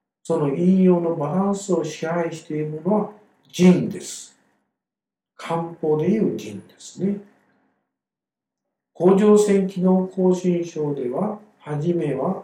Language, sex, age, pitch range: Japanese, male, 50-69, 135-190 Hz